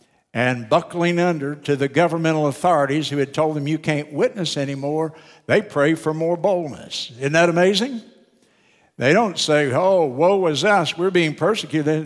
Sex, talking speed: male, 165 wpm